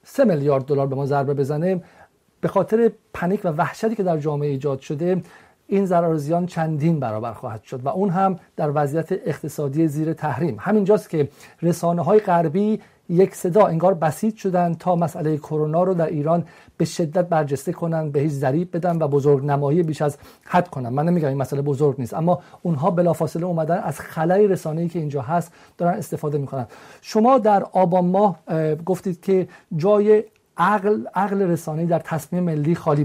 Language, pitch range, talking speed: Persian, 155-185 Hz, 180 wpm